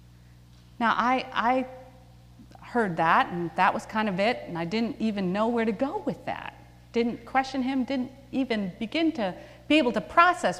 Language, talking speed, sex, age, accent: English, 180 wpm, female, 40-59, American